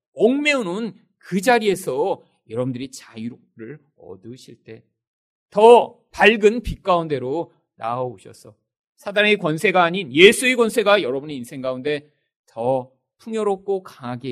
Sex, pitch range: male, 120-205 Hz